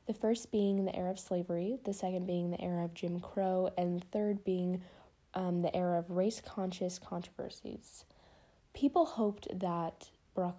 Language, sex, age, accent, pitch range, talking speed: English, female, 10-29, American, 175-205 Hz, 165 wpm